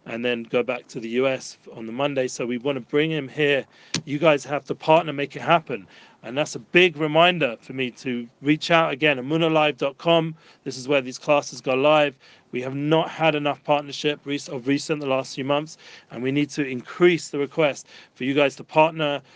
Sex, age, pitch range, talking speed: male, 40-59, 135-155 Hz, 210 wpm